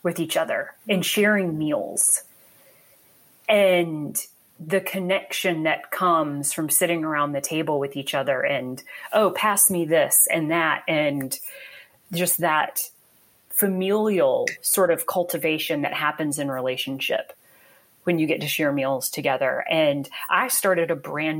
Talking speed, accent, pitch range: 135 wpm, American, 155-210 Hz